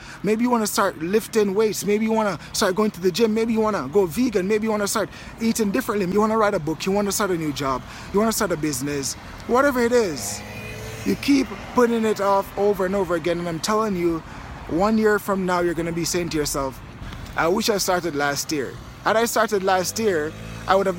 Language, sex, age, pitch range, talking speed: English, male, 20-39, 165-215 Hz, 255 wpm